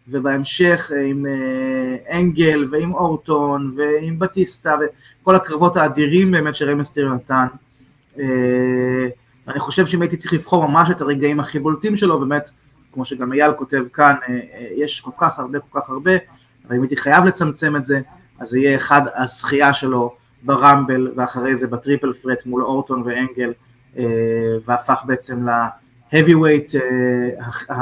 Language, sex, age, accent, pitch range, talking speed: Hebrew, male, 20-39, native, 125-150 Hz, 130 wpm